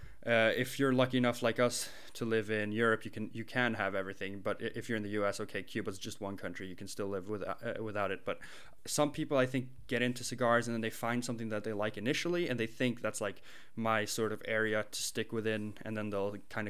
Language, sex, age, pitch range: English, male, 20-39, 105-125 Hz